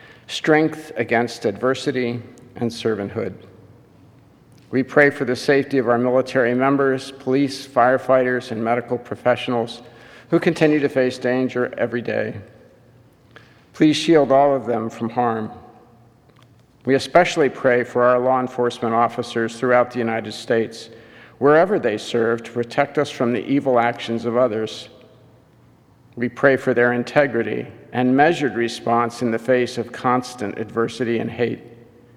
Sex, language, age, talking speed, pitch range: male, English, 50-69, 135 wpm, 115-130 Hz